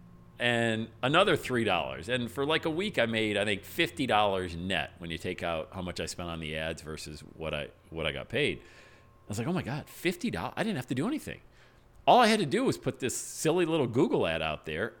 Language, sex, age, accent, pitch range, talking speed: English, male, 40-59, American, 100-140 Hz, 235 wpm